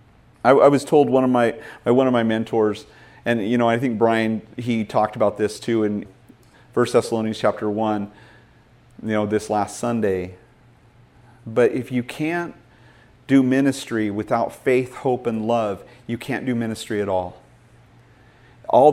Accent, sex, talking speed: American, male, 160 wpm